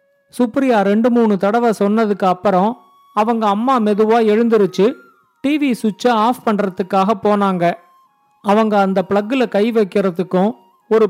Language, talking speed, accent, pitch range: Tamil, 115 wpm, native, 205-245 Hz